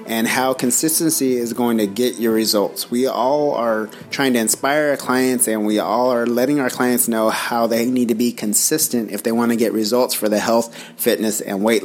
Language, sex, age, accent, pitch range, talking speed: English, male, 30-49, American, 110-125 Hz, 220 wpm